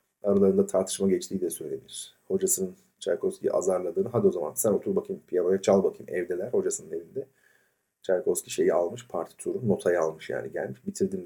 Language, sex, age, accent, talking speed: Turkish, male, 40-59, native, 160 wpm